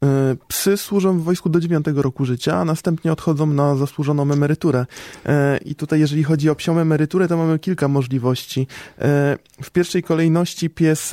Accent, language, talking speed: native, Polish, 155 wpm